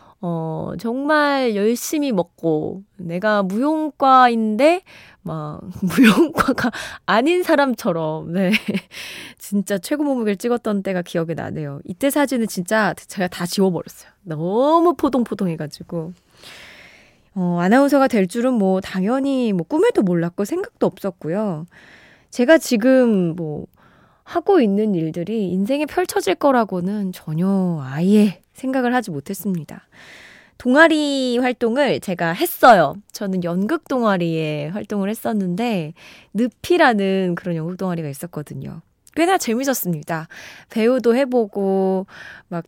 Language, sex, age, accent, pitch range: Korean, female, 20-39, native, 175-250 Hz